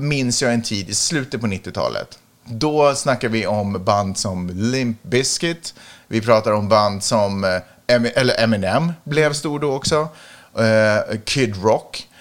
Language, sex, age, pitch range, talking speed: Swedish, male, 30-49, 105-135 Hz, 145 wpm